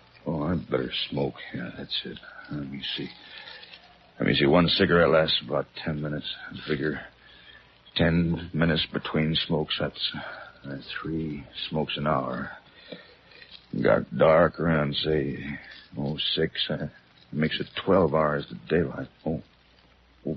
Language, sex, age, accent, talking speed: English, male, 60-79, American, 135 wpm